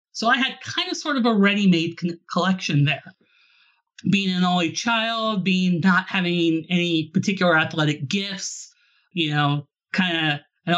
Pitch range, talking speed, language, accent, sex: 160-190 Hz, 145 wpm, English, American, male